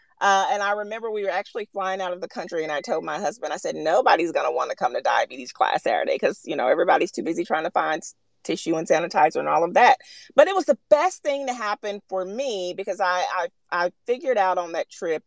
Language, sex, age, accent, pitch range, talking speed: English, female, 30-49, American, 155-205 Hz, 250 wpm